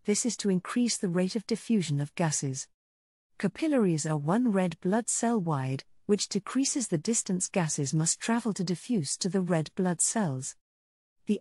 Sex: female